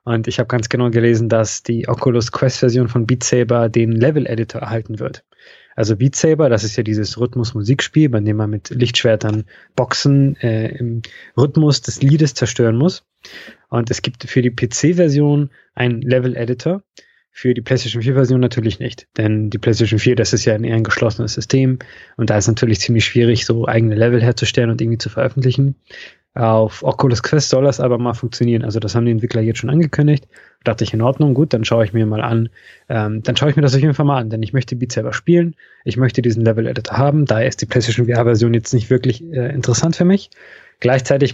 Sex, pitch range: male, 115-130 Hz